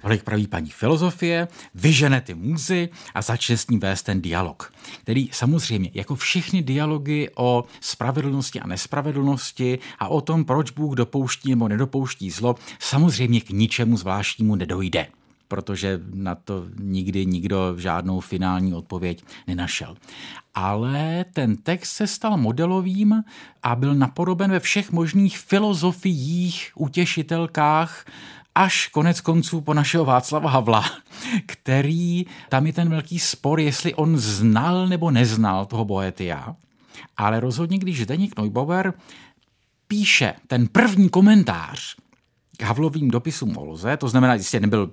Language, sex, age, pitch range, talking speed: Czech, male, 50-69, 110-175 Hz, 130 wpm